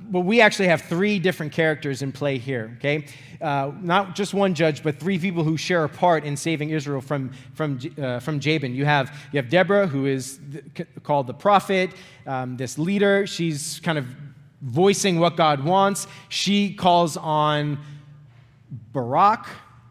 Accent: American